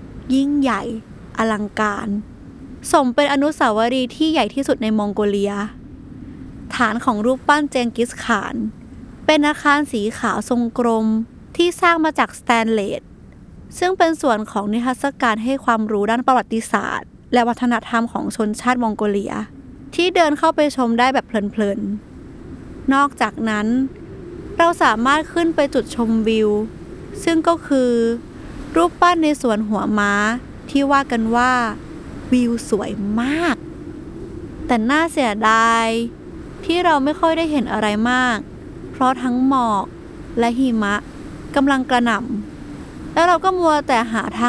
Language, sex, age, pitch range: Thai, female, 20-39, 225-280 Hz